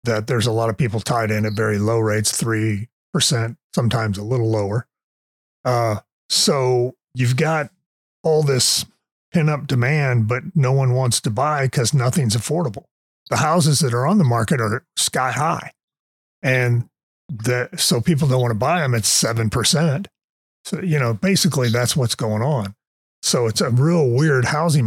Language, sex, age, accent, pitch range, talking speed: English, male, 40-59, American, 115-145 Hz, 165 wpm